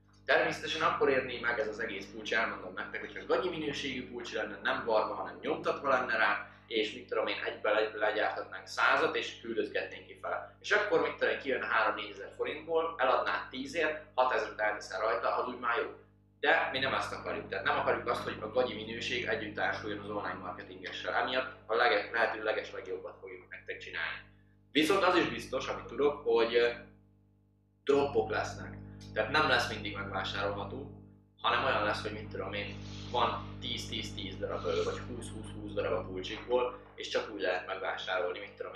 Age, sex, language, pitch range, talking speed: 20-39, male, Hungarian, 100-135 Hz, 165 wpm